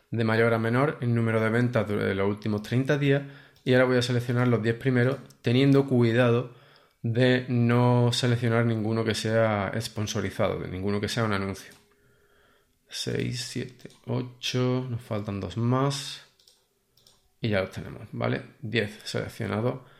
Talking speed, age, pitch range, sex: 150 wpm, 20-39, 110-130 Hz, male